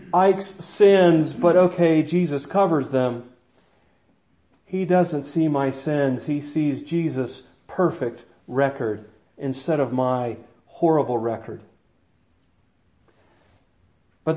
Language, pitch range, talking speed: English, 140-180 Hz, 95 wpm